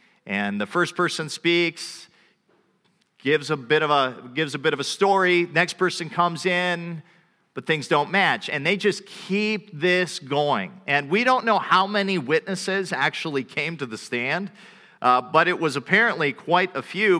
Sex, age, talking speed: male, 50-69, 175 wpm